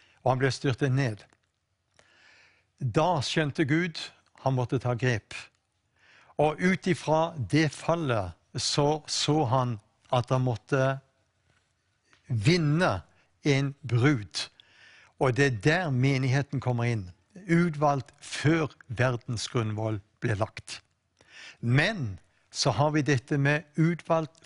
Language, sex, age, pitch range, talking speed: English, male, 60-79, 120-150 Hz, 110 wpm